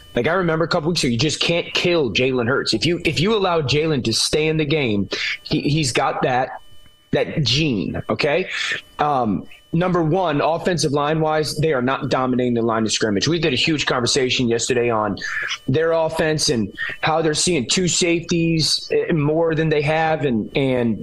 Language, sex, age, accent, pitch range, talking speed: English, male, 20-39, American, 135-165 Hz, 190 wpm